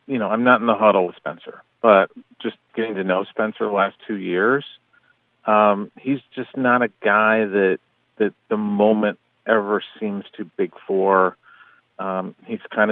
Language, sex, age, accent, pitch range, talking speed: Dutch, male, 40-59, American, 95-115 Hz, 170 wpm